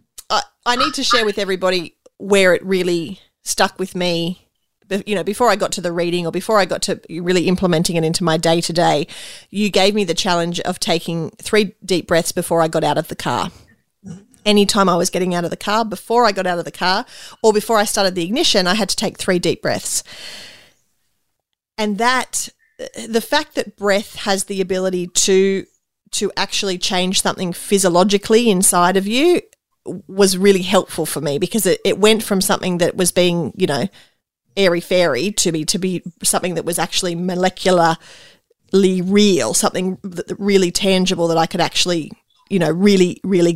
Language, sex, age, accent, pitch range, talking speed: English, female, 30-49, Australian, 175-210 Hz, 185 wpm